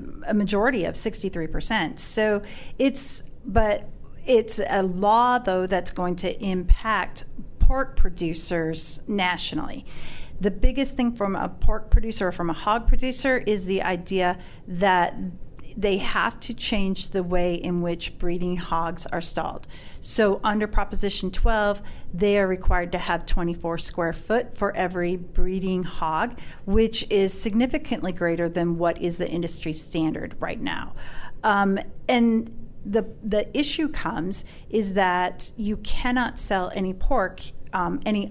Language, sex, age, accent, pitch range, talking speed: English, female, 40-59, American, 180-220 Hz, 140 wpm